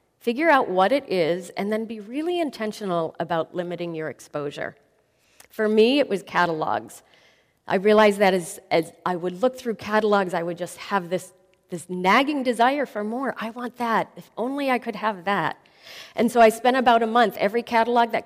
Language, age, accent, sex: English, 40-59, American, female